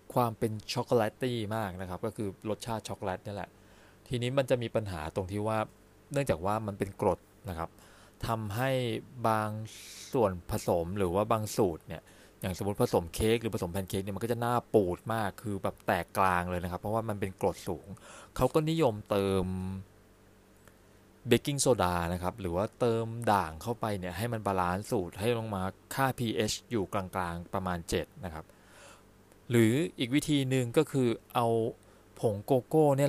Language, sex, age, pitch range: Thai, male, 20-39, 95-125 Hz